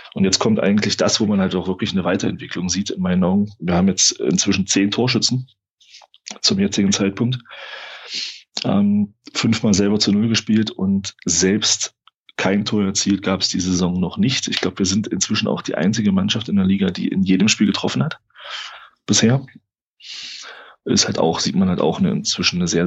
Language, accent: German, German